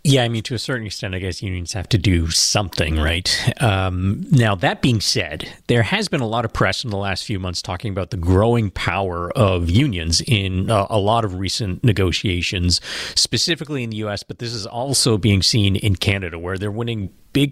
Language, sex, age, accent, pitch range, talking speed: English, male, 40-59, American, 90-115 Hz, 210 wpm